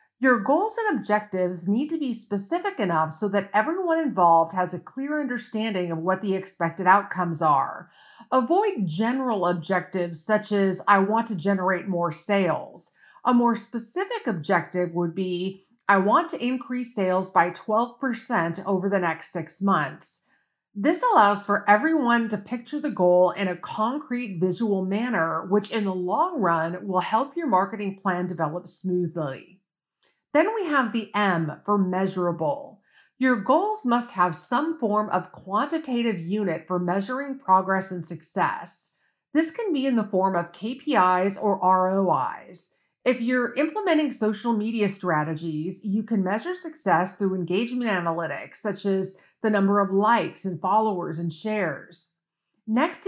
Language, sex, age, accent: English, female, 40-59, American